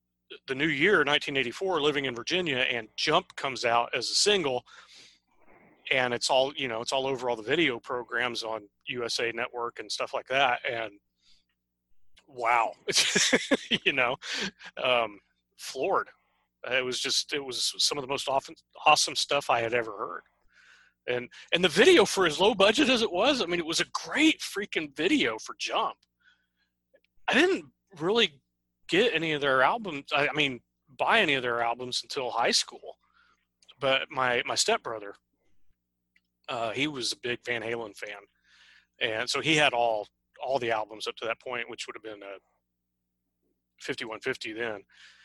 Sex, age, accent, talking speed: male, 30-49, American, 165 wpm